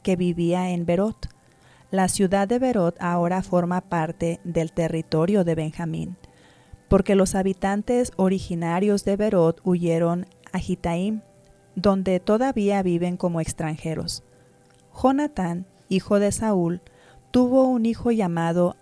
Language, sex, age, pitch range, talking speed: English, female, 30-49, 170-200 Hz, 120 wpm